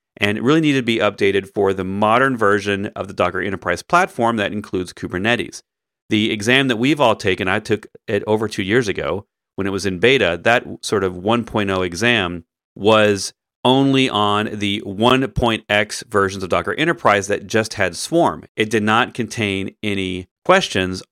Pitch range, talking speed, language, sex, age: 100-130 Hz, 175 wpm, English, male, 40-59